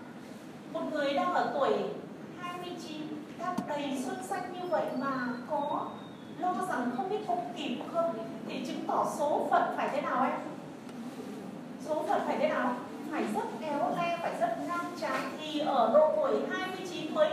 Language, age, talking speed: Vietnamese, 30-49, 170 wpm